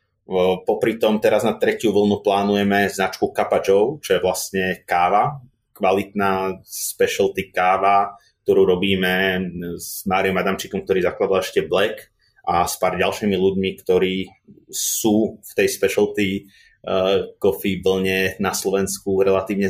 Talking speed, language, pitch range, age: 130 wpm, Slovak, 95-115 Hz, 30-49